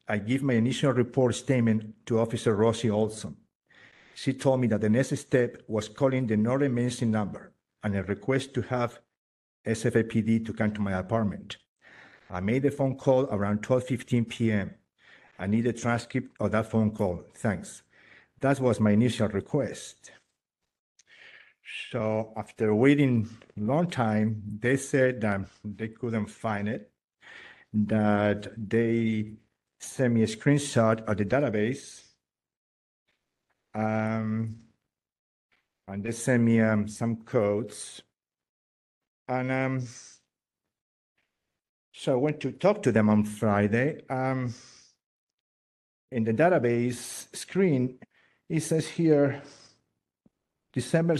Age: 50-69